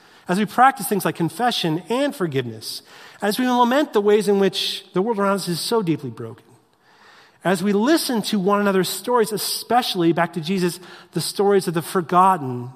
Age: 40-59